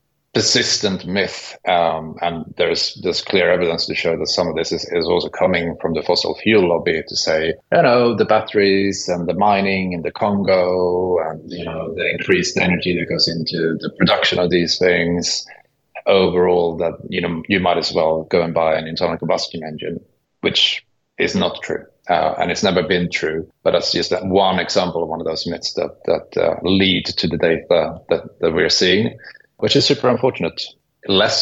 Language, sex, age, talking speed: English, male, 30-49, 195 wpm